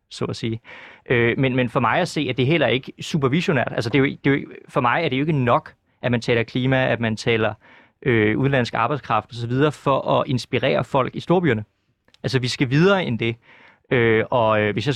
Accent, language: native, Danish